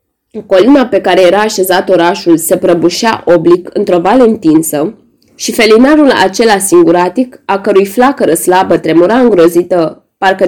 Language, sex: Romanian, female